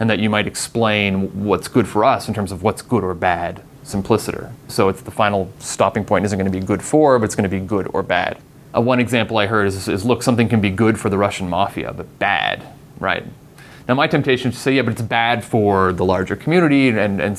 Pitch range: 100-125 Hz